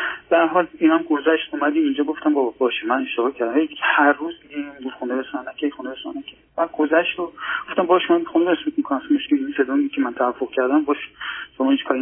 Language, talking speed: Persian, 205 wpm